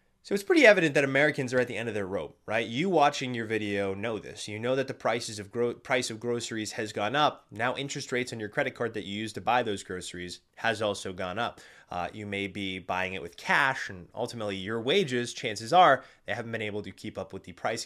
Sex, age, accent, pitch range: male, 20-39, American, 100-125 Hz